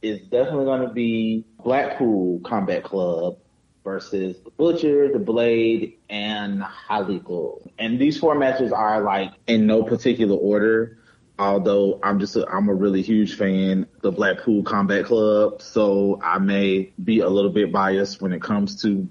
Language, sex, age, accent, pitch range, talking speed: English, male, 30-49, American, 100-115 Hz, 160 wpm